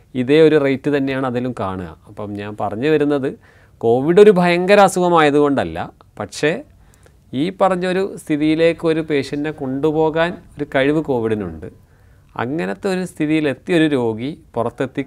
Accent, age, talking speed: native, 30-49, 110 wpm